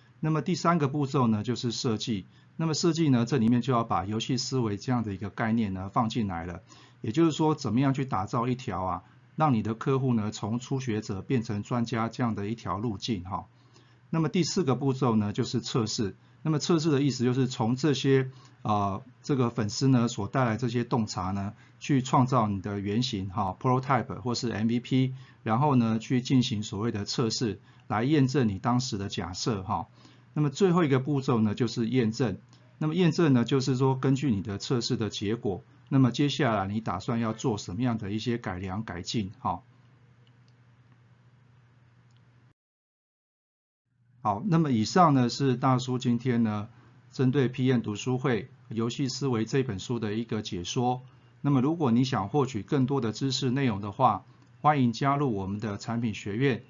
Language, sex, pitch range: Chinese, male, 110-130 Hz